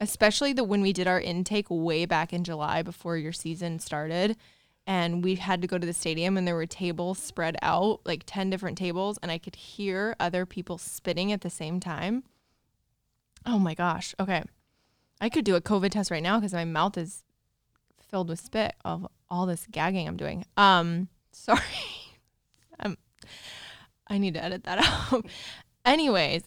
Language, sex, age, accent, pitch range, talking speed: English, female, 20-39, American, 165-195 Hz, 180 wpm